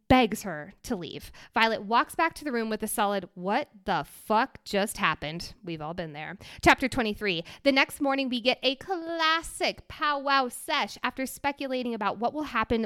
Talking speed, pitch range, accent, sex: 180 wpm, 210-310 Hz, American, female